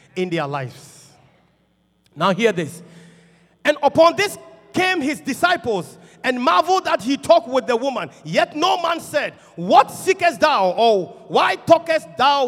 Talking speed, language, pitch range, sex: 150 wpm, English, 185-300 Hz, male